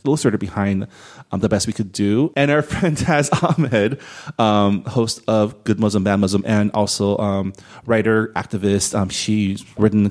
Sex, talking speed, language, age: male, 180 wpm, English, 30-49